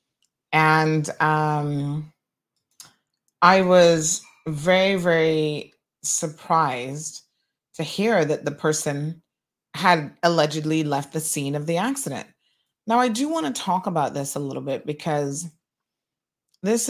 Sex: female